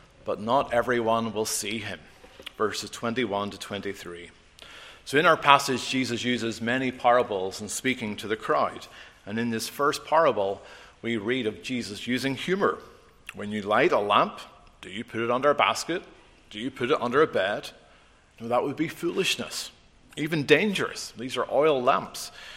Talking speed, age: 170 wpm, 40-59